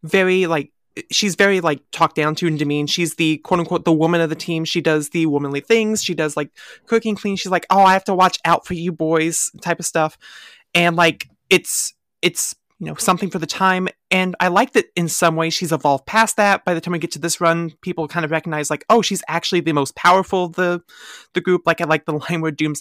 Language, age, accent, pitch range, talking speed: English, 30-49, American, 155-185 Hz, 245 wpm